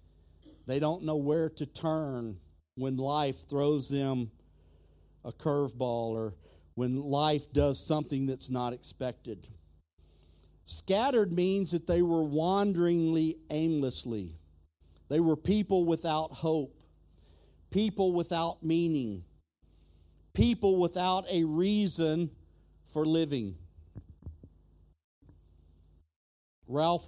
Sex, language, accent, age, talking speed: male, English, American, 50-69, 95 wpm